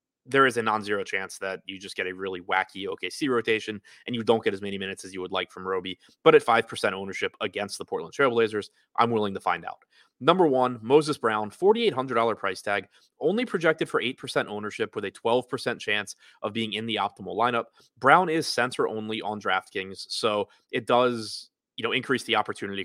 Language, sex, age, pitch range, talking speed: English, male, 20-39, 100-130 Hz, 200 wpm